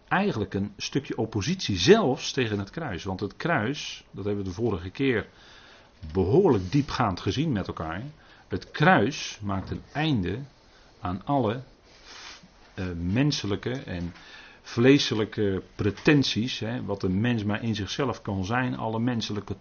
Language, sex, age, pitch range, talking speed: Dutch, male, 40-59, 100-140 Hz, 135 wpm